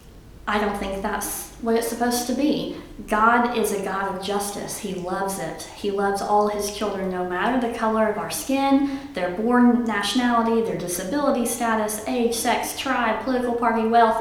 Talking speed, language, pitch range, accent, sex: 175 wpm, English, 190-240 Hz, American, female